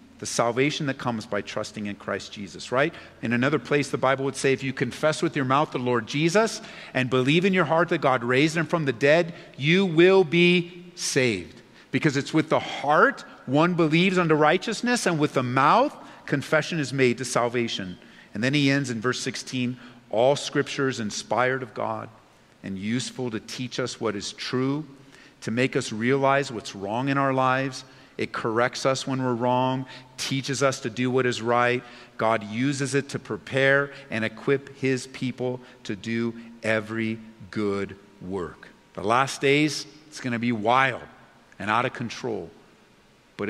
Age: 50-69